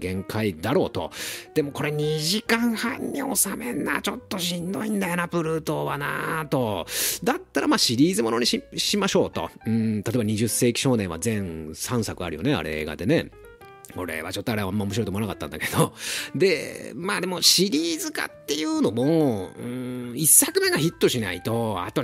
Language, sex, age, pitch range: Japanese, male, 40-59, 105-175 Hz